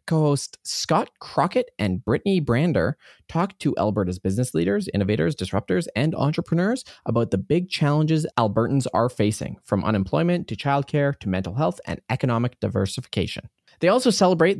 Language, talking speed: English, 145 wpm